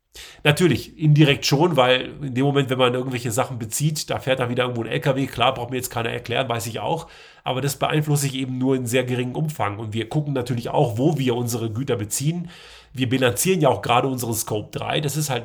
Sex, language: male, German